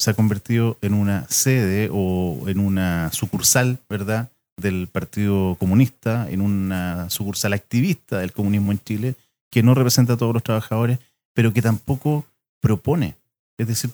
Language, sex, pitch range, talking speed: English, male, 100-130 Hz, 150 wpm